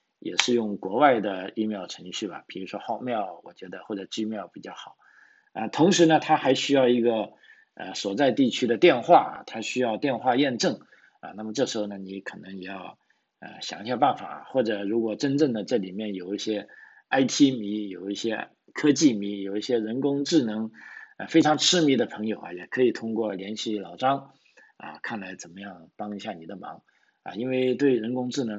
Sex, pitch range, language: male, 100-125 Hz, Chinese